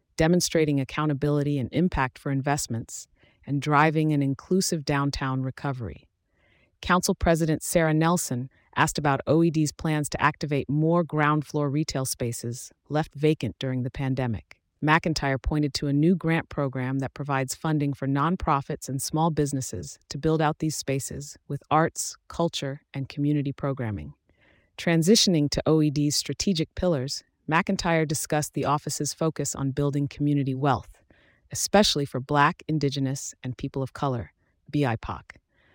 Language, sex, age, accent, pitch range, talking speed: English, female, 40-59, American, 135-160 Hz, 135 wpm